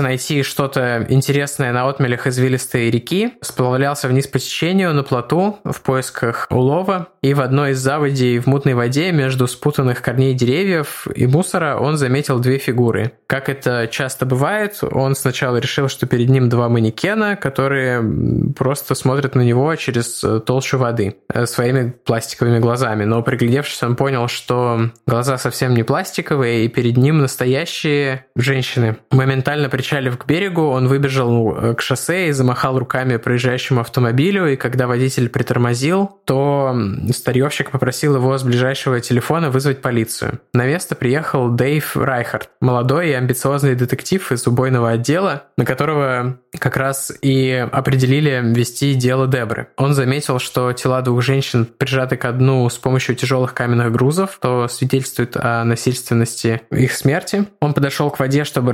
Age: 20-39